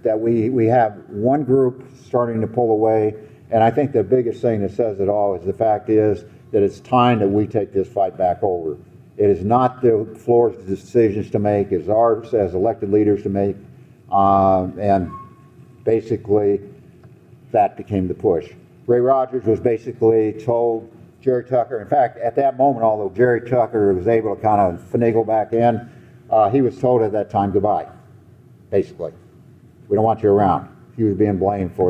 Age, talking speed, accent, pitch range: 60-79, 180 wpm, American, 110-130 Hz